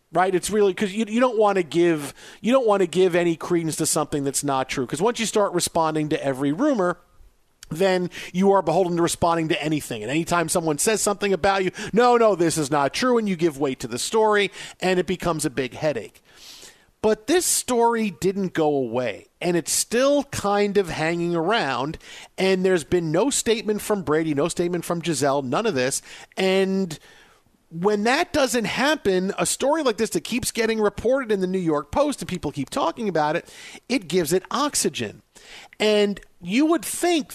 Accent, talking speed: American, 200 wpm